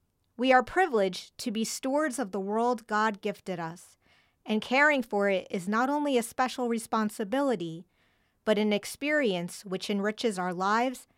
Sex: female